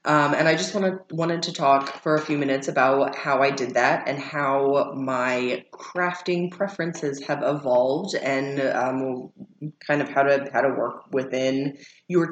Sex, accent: female, American